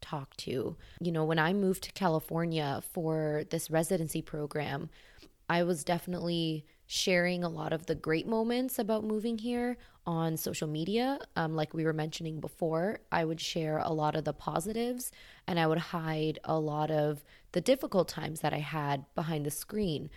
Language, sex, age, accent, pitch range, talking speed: English, female, 20-39, American, 155-180 Hz, 175 wpm